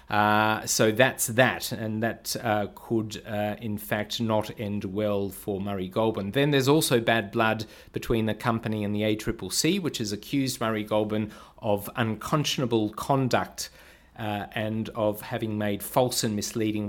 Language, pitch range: English, 105-120 Hz